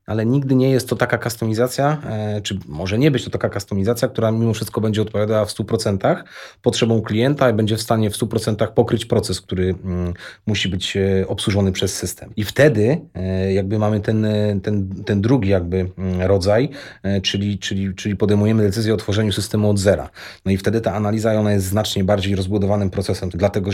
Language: English